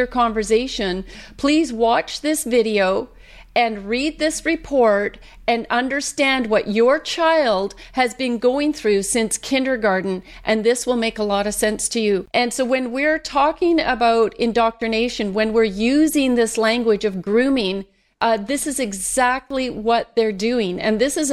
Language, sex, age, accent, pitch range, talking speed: English, female, 40-59, American, 210-245 Hz, 150 wpm